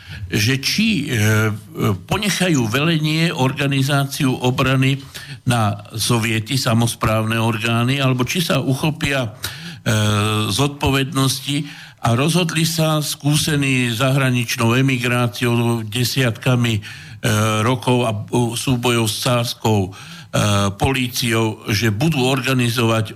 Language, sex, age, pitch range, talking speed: Slovak, male, 60-79, 115-140 Hz, 95 wpm